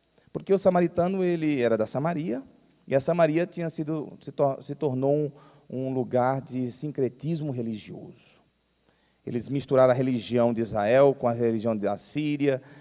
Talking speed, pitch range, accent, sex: 135 wpm, 115-150 Hz, Brazilian, male